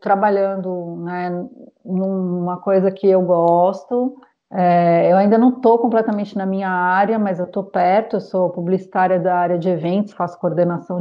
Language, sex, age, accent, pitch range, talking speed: Portuguese, female, 30-49, Brazilian, 190-230 Hz, 155 wpm